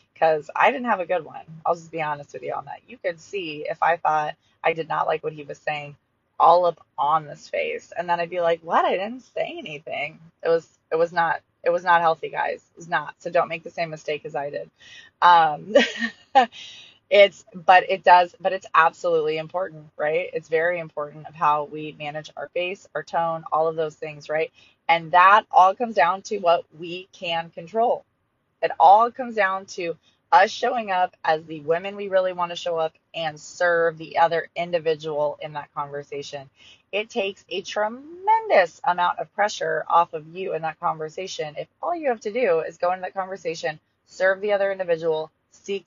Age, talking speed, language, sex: 20-39, 205 wpm, English, female